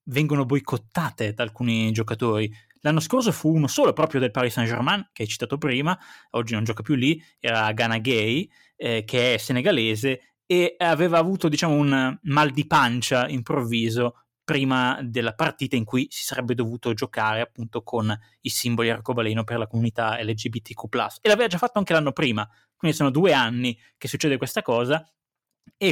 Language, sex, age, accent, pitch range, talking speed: Italian, male, 20-39, native, 115-150 Hz, 170 wpm